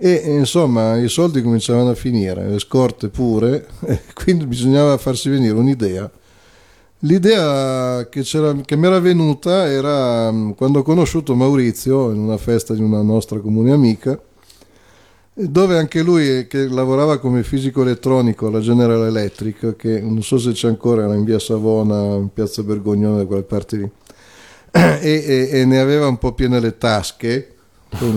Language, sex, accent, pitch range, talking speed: Italian, male, native, 110-135 Hz, 155 wpm